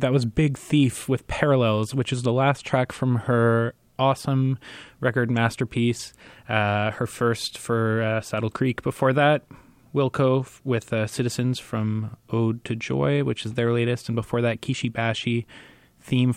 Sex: male